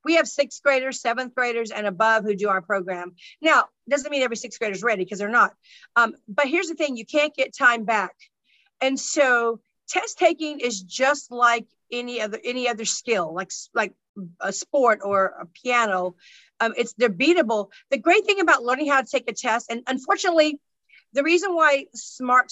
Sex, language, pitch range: female, English, 220-275 Hz